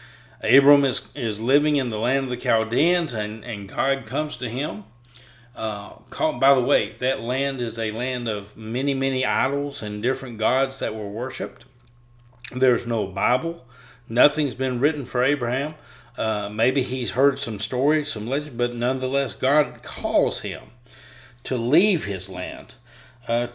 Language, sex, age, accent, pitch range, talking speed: English, male, 40-59, American, 120-145 Hz, 160 wpm